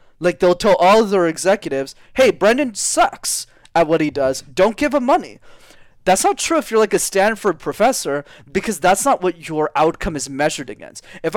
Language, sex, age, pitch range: English, male, 20-39, 140-190 Hz